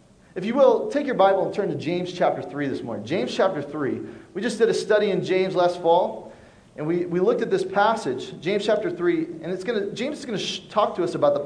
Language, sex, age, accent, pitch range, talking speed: English, male, 30-49, American, 155-215 Hz, 255 wpm